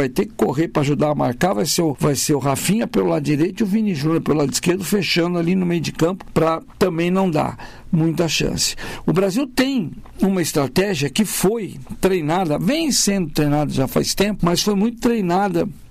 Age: 60-79